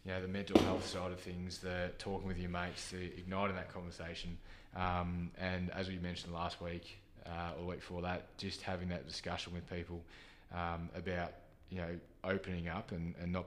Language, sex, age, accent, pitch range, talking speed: English, male, 20-39, Australian, 85-95 Hz, 200 wpm